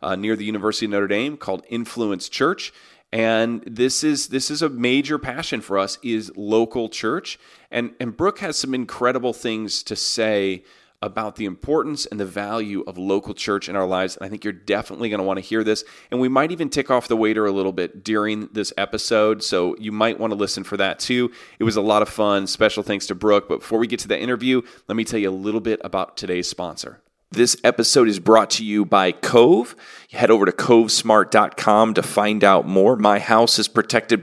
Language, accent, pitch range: English, American, 95-115 Hz